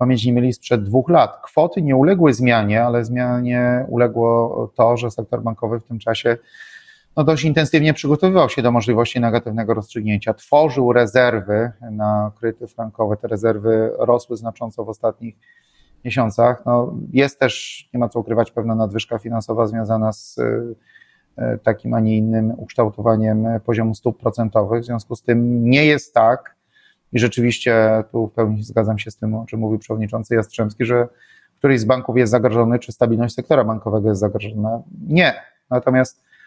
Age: 30-49